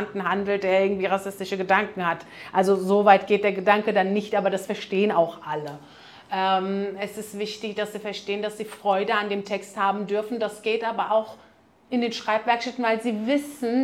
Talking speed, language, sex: 190 wpm, German, female